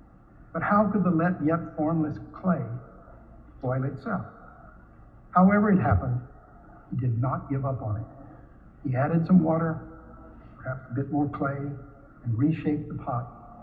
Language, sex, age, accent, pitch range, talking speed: English, male, 60-79, American, 120-150 Hz, 145 wpm